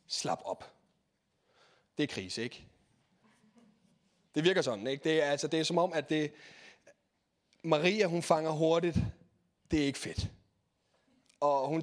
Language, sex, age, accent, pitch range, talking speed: Danish, male, 30-49, native, 125-165 Hz, 135 wpm